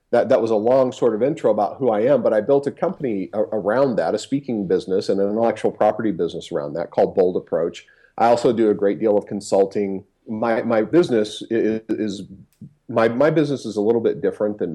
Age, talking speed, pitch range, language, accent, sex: 40-59, 210 wpm, 95-120 Hz, English, American, male